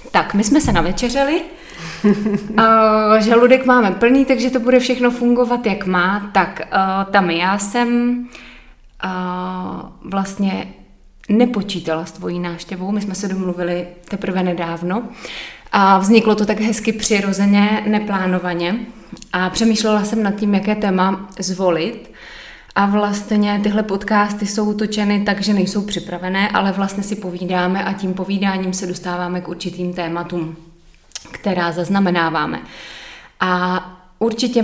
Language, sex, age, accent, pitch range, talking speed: Czech, female, 20-39, native, 185-215 Hz, 125 wpm